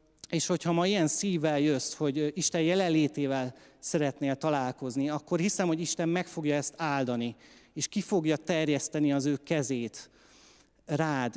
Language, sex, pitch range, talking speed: Hungarian, male, 135-165 Hz, 145 wpm